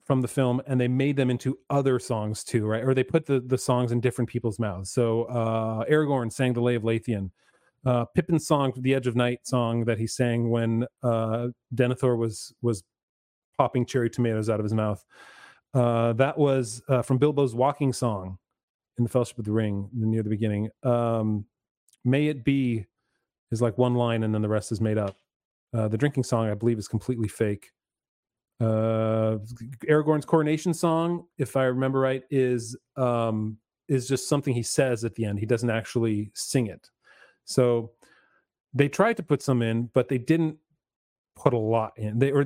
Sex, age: male, 30-49